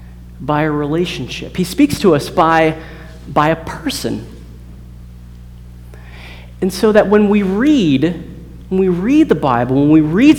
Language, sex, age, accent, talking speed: English, male, 40-59, American, 145 wpm